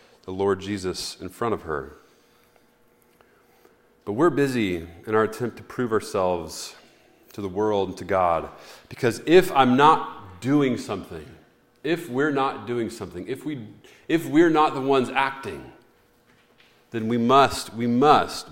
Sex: male